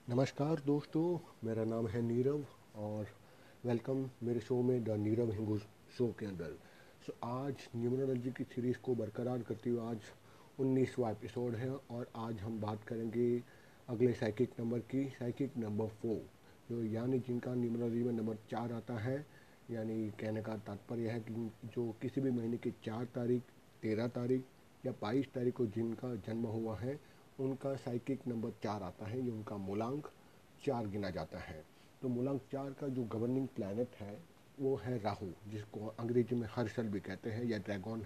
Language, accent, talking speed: Hindi, native, 170 wpm